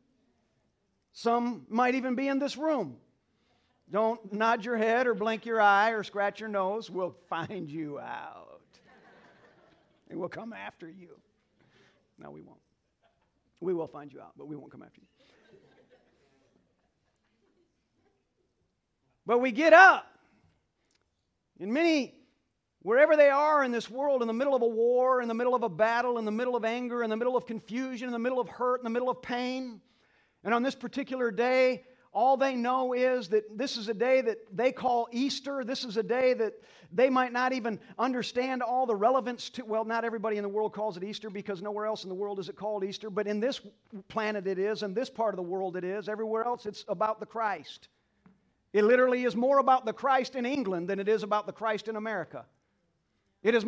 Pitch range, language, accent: 210-255 Hz, English, American